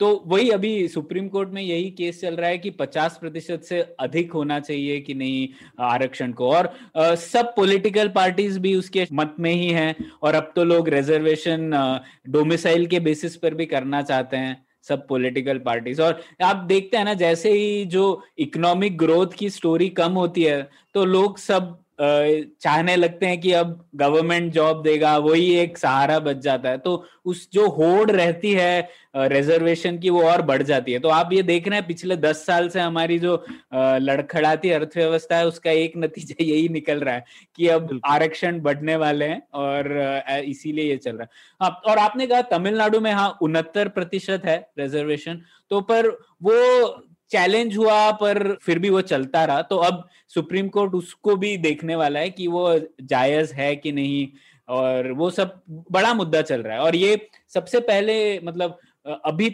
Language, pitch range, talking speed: Hindi, 155-190 Hz, 180 wpm